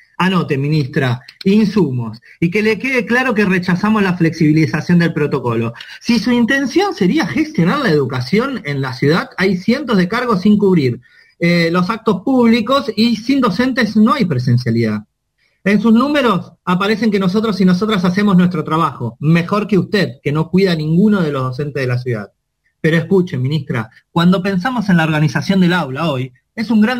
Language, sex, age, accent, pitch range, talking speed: Spanish, male, 30-49, Argentinian, 145-215 Hz, 175 wpm